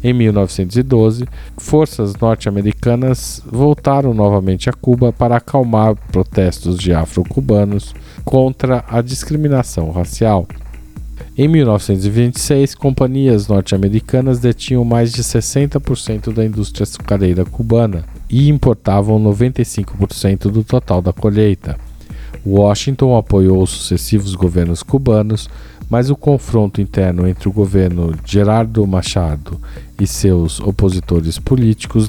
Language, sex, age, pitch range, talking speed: Portuguese, male, 40-59, 95-120 Hz, 105 wpm